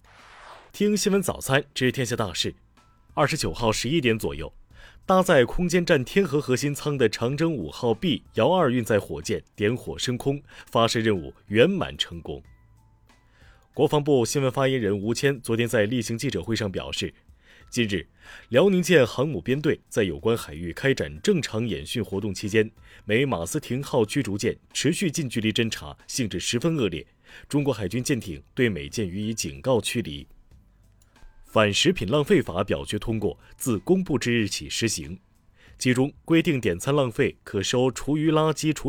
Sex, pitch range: male, 105-135 Hz